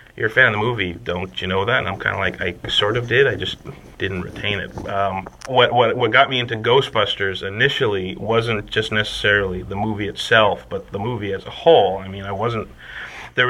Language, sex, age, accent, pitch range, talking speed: English, male, 30-49, American, 95-115 Hz, 220 wpm